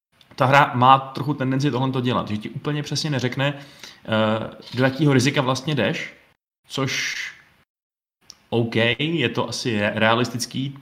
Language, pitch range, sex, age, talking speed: Czech, 115-135 Hz, male, 20-39, 135 wpm